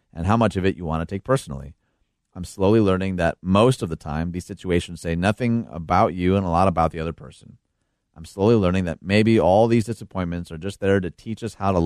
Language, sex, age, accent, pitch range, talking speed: English, male, 30-49, American, 85-100 Hz, 240 wpm